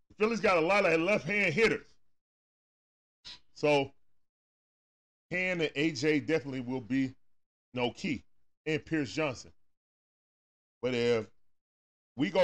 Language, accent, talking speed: English, American, 110 wpm